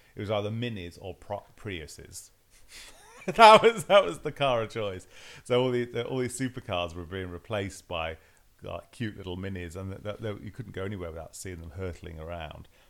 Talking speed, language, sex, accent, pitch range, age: 200 wpm, English, male, British, 85-110 Hz, 30-49